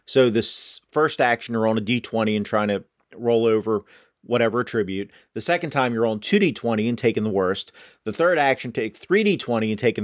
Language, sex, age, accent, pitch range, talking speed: English, male, 40-59, American, 110-140 Hz, 190 wpm